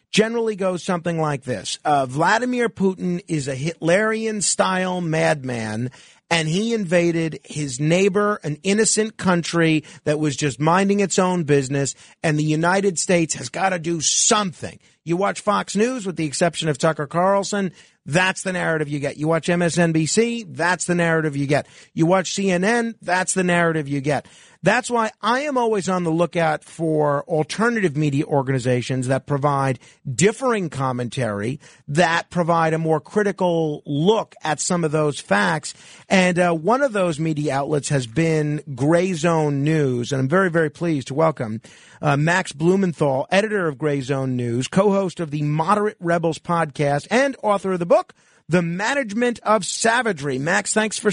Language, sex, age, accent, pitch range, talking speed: English, male, 50-69, American, 150-195 Hz, 165 wpm